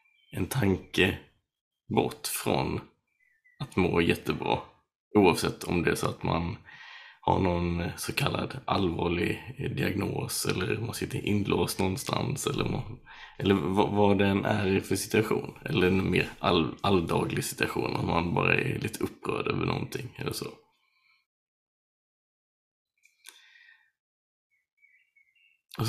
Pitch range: 100-160 Hz